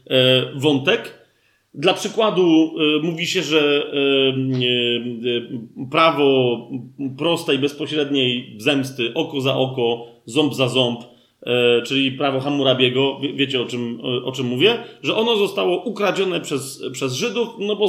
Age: 40-59